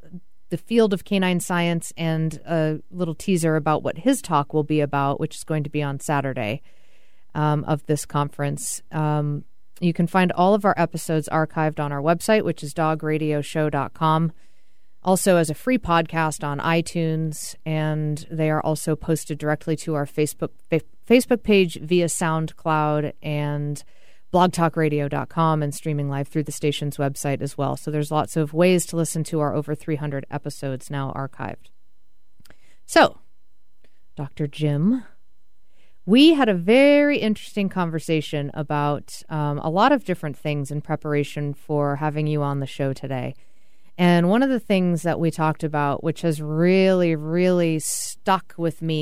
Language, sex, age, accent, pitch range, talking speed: English, female, 30-49, American, 145-170 Hz, 160 wpm